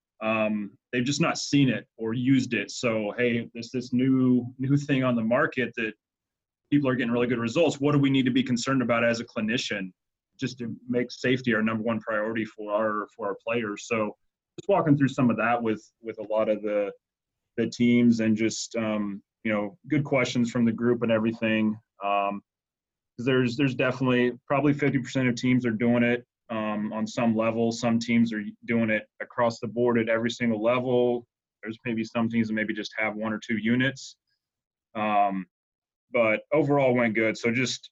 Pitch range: 110-125 Hz